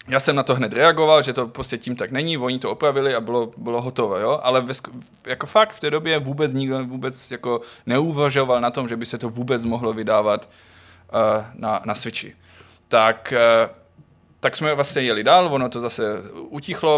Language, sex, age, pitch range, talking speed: Czech, male, 20-39, 115-145 Hz, 190 wpm